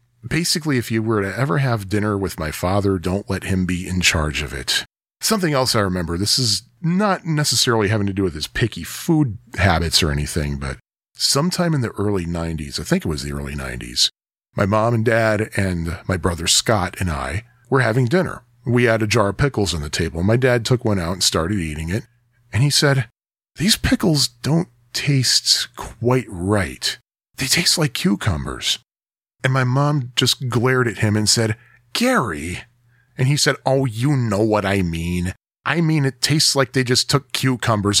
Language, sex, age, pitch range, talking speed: English, male, 40-59, 95-130 Hz, 195 wpm